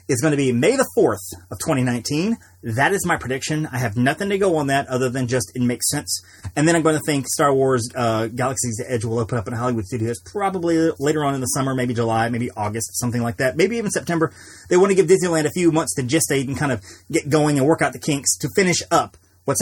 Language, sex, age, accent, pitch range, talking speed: English, male, 30-49, American, 115-160 Hz, 255 wpm